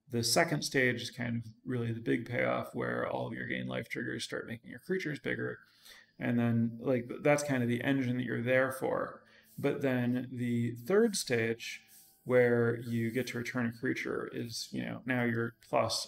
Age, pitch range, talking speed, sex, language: 30-49, 110-135 Hz, 195 wpm, male, English